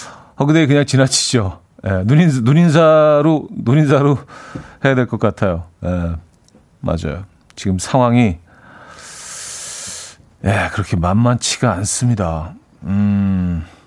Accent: native